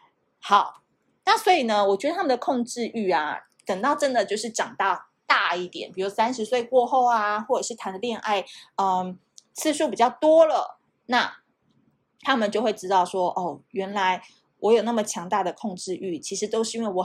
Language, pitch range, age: Chinese, 195-255 Hz, 20-39